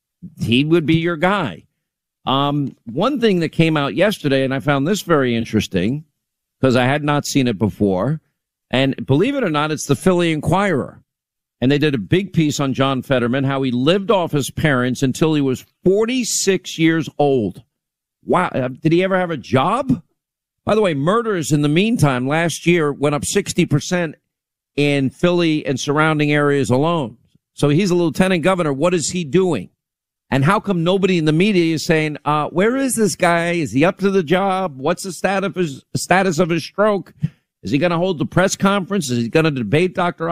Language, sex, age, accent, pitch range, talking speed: English, male, 50-69, American, 135-180 Hz, 200 wpm